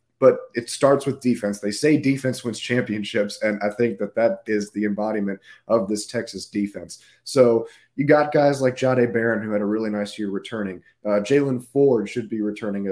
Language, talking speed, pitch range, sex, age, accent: English, 195 wpm, 105-130 Hz, male, 30-49, American